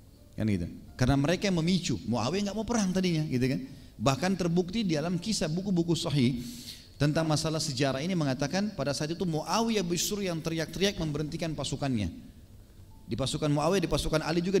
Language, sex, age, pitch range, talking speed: Indonesian, male, 40-59, 130-180 Hz, 170 wpm